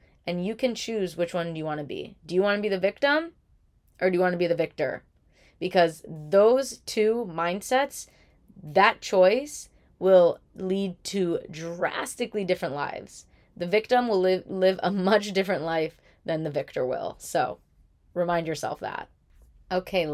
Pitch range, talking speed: 160-200 Hz, 165 wpm